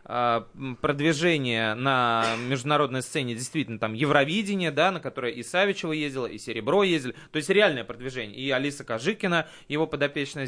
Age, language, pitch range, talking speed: 20-39, Russian, 110-145 Hz, 145 wpm